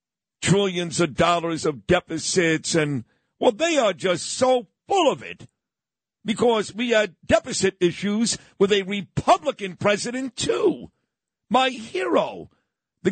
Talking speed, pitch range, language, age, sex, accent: 125 wpm, 175-250 Hz, English, 50-69, male, American